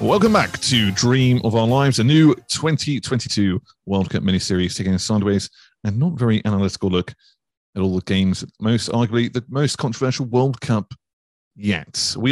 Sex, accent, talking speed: male, British, 165 wpm